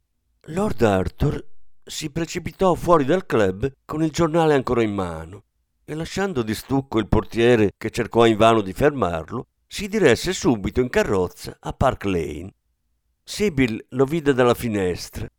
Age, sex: 50-69, male